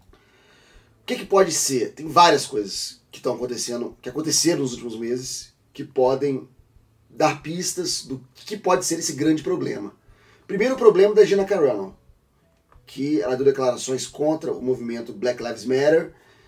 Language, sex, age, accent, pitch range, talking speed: Portuguese, male, 30-49, Brazilian, 125-170 Hz, 155 wpm